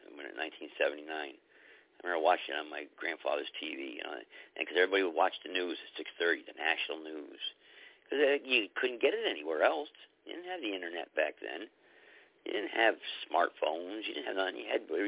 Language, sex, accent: English, male, American